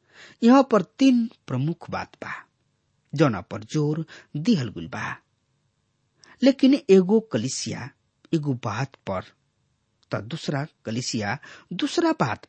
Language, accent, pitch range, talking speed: English, Indian, 115-175 Hz, 105 wpm